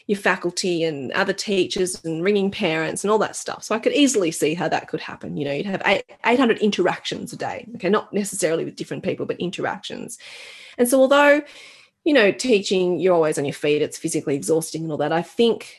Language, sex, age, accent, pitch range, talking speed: English, female, 30-49, Australian, 165-215 Hz, 215 wpm